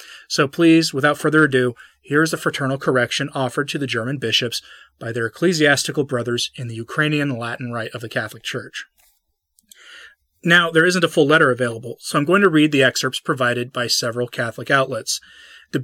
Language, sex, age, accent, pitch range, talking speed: English, male, 30-49, American, 125-160 Hz, 180 wpm